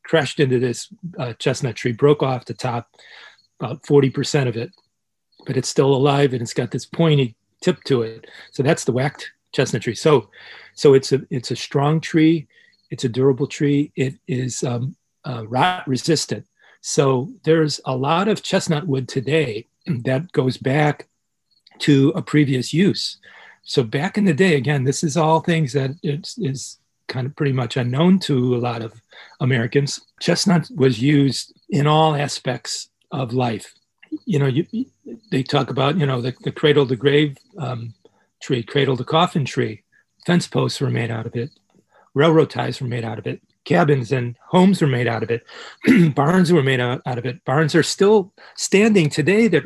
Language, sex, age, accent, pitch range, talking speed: English, male, 40-59, American, 125-155 Hz, 180 wpm